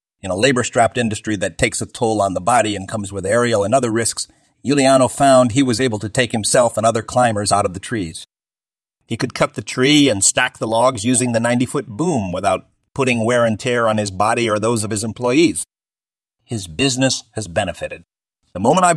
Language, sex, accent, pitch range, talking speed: English, male, American, 100-140 Hz, 210 wpm